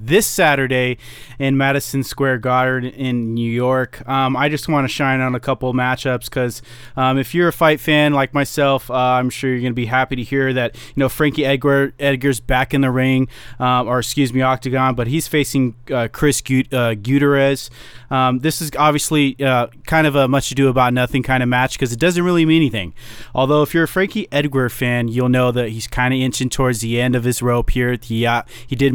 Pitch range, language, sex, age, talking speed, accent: 125-145 Hz, English, male, 20-39, 225 wpm, American